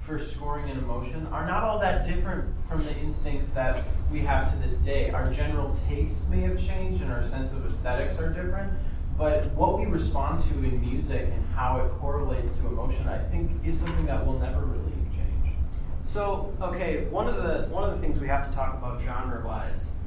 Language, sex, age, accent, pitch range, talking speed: English, male, 20-39, American, 75-90 Hz, 205 wpm